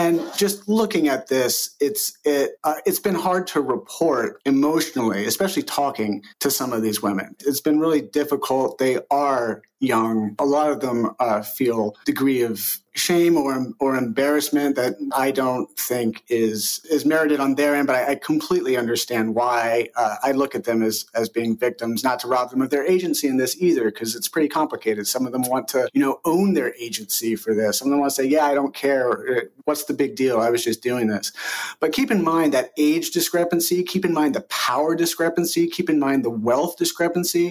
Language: English